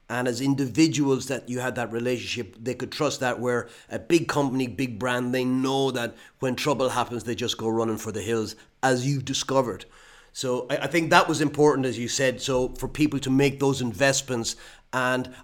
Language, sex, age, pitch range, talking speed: English, male, 30-49, 120-140 Hz, 200 wpm